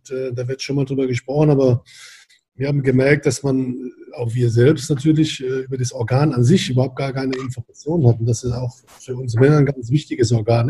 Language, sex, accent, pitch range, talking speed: German, male, German, 130-155 Hz, 200 wpm